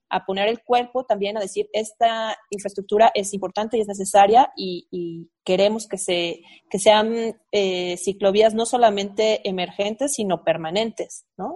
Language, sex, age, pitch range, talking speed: Spanish, female, 30-49, 195-230 Hz, 150 wpm